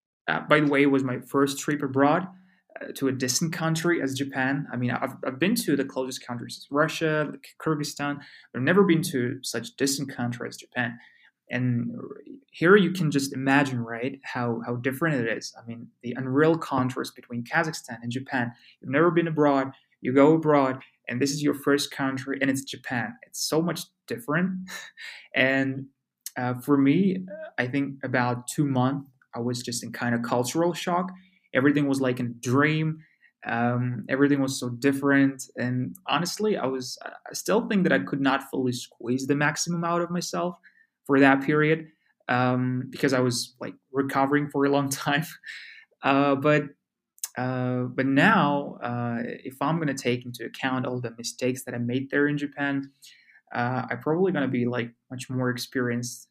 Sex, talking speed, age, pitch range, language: male, 175 wpm, 20-39, 125-155 Hz, Russian